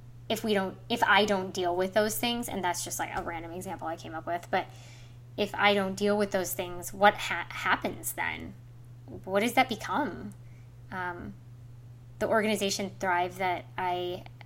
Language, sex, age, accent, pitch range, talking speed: English, female, 20-39, American, 120-200 Hz, 180 wpm